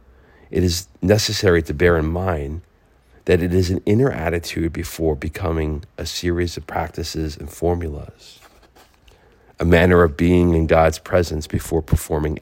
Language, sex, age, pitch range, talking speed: English, male, 40-59, 80-95 Hz, 145 wpm